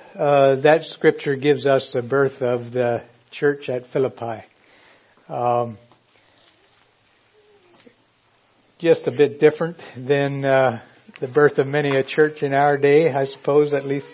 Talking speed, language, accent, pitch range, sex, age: 135 wpm, English, American, 125-165 Hz, male, 60-79